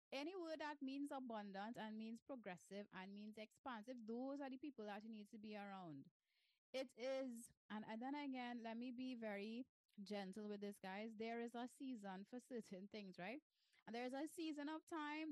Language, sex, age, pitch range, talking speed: English, female, 20-39, 210-270 Hz, 195 wpm